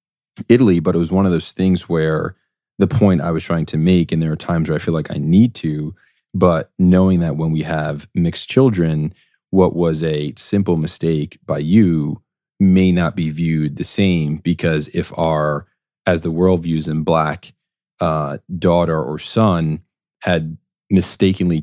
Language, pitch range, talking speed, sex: English, 80-90 Hz, 175 wpm, male